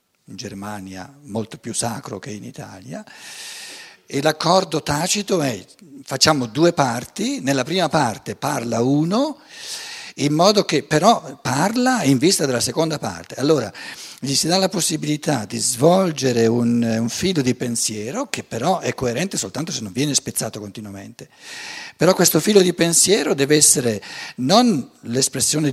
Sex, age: male, 50-69